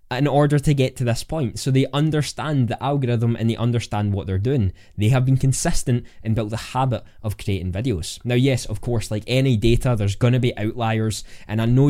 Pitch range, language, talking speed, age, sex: 100-135 Hz, English, 215 wpm, 10-29, male